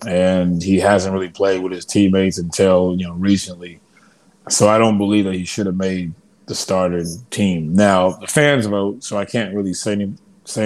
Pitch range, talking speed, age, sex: 95-115 Hz, 195 wpm, 20-39, male